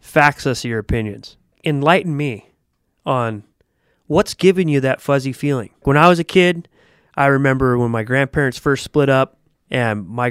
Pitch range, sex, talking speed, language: 125-160 Hz, male, 165 wpm, English